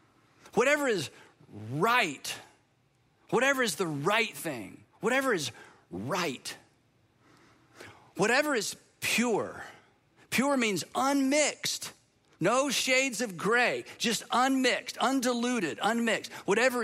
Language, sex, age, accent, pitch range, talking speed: English, male, 40-59, American, 140-220 Hz, 95 wpm